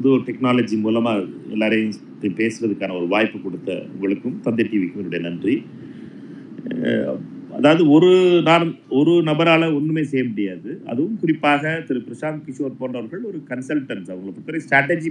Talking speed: 120 wpm